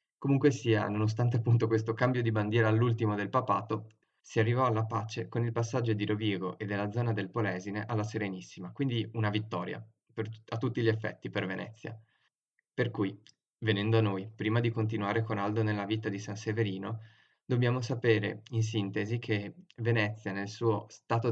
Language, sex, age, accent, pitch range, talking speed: Italian, male, 20-39, native, 105-120 Hz, 170 wpm